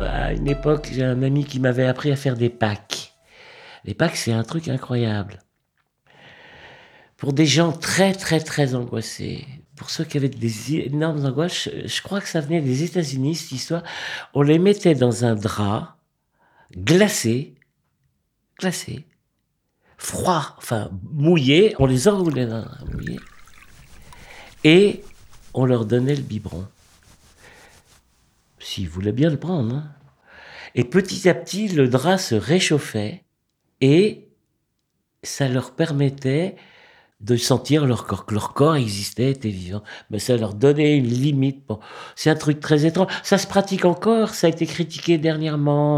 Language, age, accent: French, 50-69, French